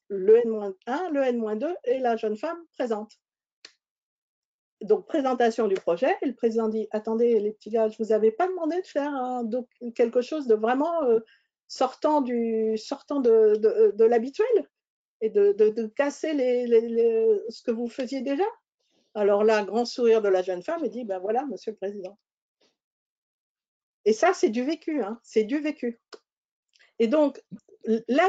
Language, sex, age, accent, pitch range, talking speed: French, female, 50-69, French, 220-305 Hz, 180 wpm